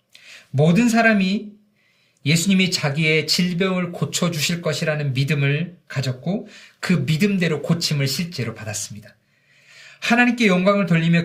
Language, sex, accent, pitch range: Korean, male, native, 130-185 Hz